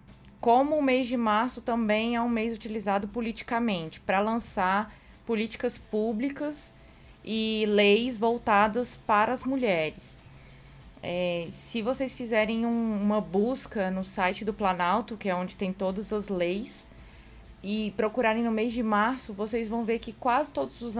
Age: 20-39